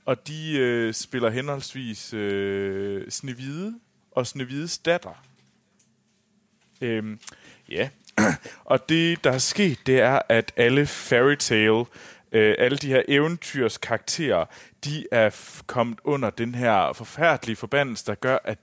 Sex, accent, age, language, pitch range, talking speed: male, native, 30-49, Danish, 105-135 Hz, 130 wpm